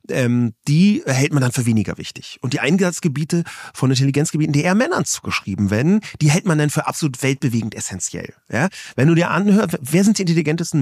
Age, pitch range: 30-49, 130-175 Hz